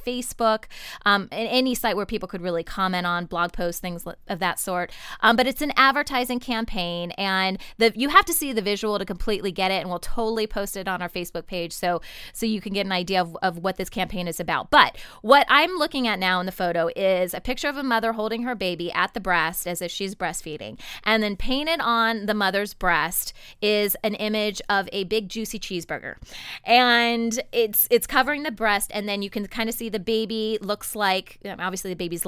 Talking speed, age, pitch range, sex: 220 wpm, 20-39, 185-240 Hz, female